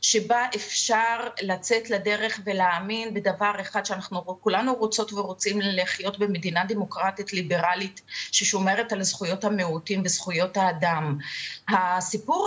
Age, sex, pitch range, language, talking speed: 30-49, female, 195-245 Hz, Hebrew, 105 wpm